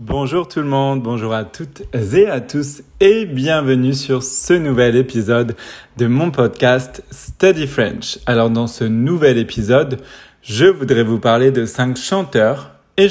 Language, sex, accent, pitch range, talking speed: French, male, French, 125-155 Hz, 155 wpm